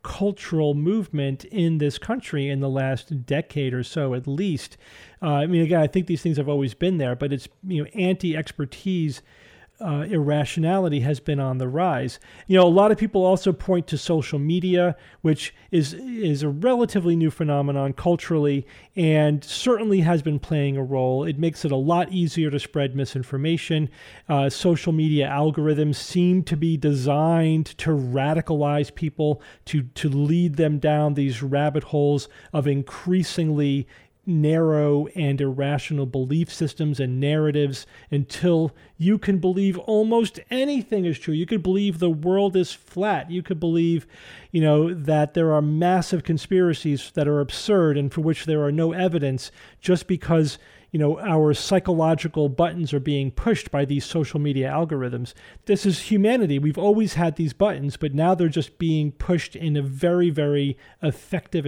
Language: English